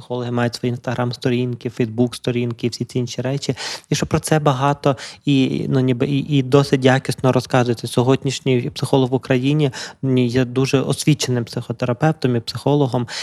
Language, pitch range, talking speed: Ukrainian, 125-140 Hz, 155 wpm